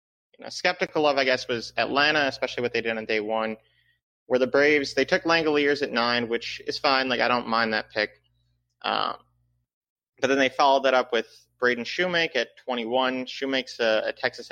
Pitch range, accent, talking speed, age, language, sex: 110-140 Hz, American, 190 wpm, 30-49, English, male